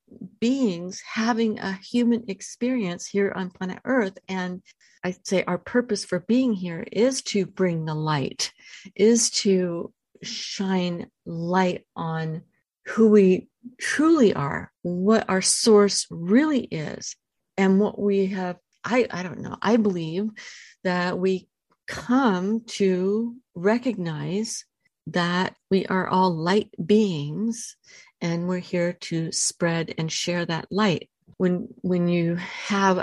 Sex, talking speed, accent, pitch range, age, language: female, 125 wpm, American, 175-220 Hz, 50-69, English